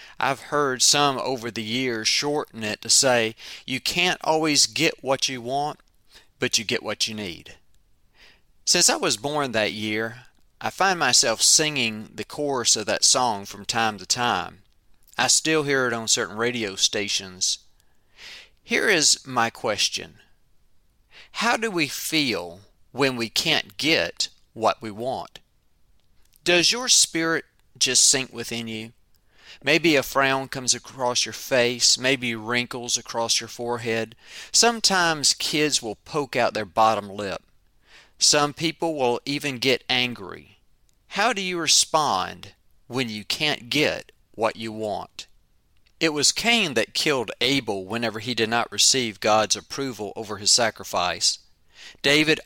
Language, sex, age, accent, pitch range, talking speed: English, male, 40-59, American, 110-140 Hz, 145 wpm